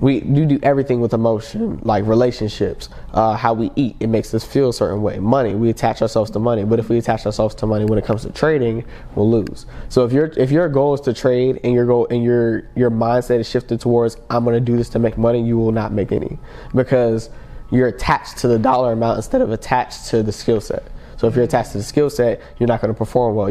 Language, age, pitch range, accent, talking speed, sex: English, 20-39, 110-125 Hz, American, 255 wpm, male